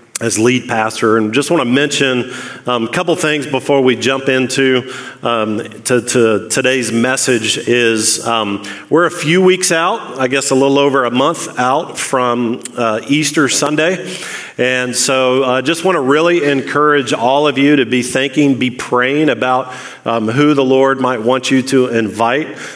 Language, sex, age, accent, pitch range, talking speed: English, male, 40-59, American, 115-145 Hz, 180 wpm